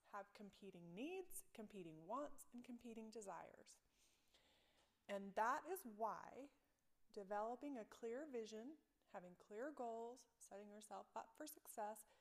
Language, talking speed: English, 120 wpm